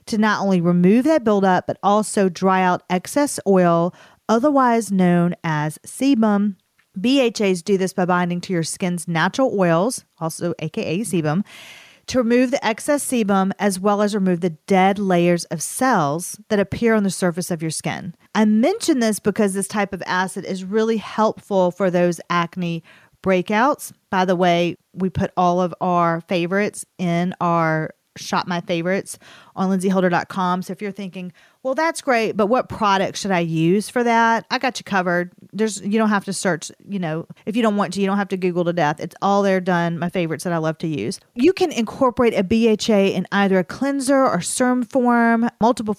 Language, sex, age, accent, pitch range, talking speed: English, female, 40-59, American, 180-215 Hz, 190 wpm